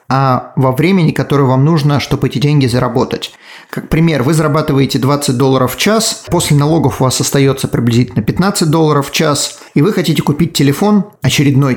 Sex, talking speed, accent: male, 175 wpm, native